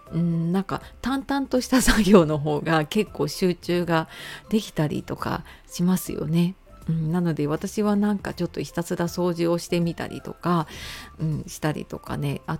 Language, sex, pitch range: Japanese, female, 155-205 Hz